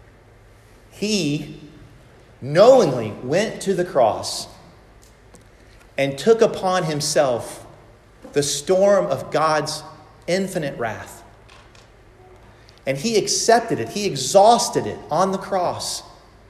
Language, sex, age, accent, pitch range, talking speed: English, male, 40-59, American, 110-160 Hz, 95 wpm